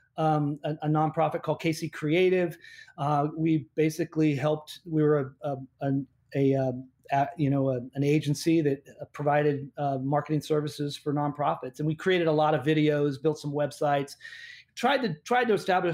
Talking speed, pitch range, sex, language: 175 wpm, 150-175 Hz, male, English